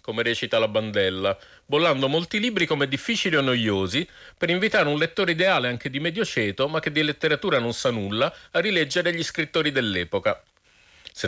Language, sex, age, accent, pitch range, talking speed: Italian, male, 50-69, native, 120-165 Hz, 170 wpm